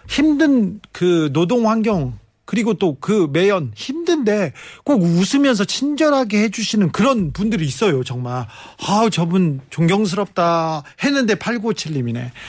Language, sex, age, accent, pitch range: Korean, male, 40-59, native, 140-200 Hz